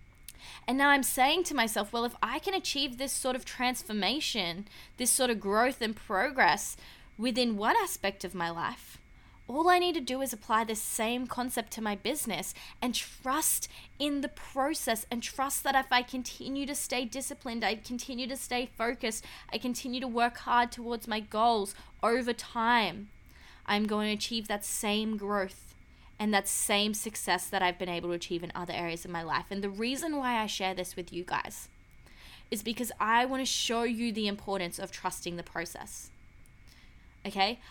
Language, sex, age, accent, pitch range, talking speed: English, female, 20-39, Australian, 210-255 Hz, 185 wpm